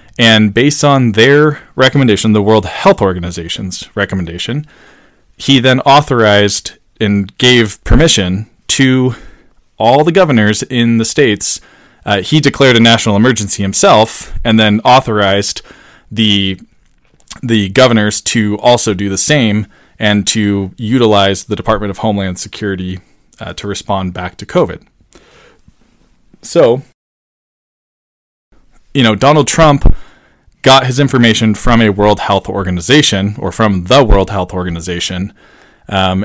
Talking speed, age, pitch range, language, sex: 125 wpm, 20-39, 95-115 Hz, English, male